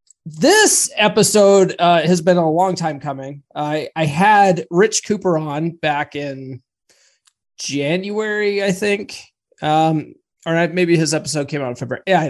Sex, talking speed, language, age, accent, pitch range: male, 150 wpm, English, 20-39, American, 140-185 Hz